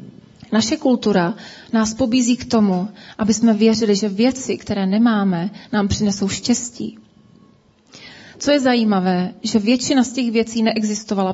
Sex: female